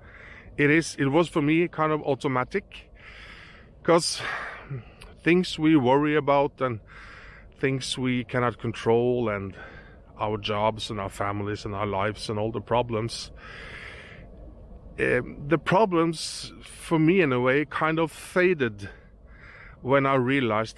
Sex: male